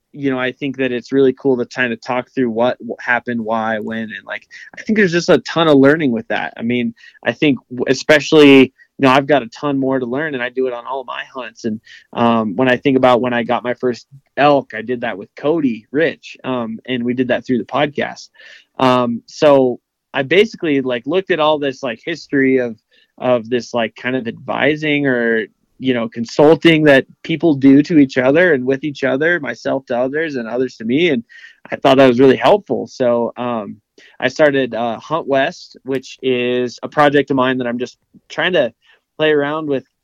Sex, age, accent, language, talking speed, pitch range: male, 20-39, American, English, 215 wpm, 120-145 Hz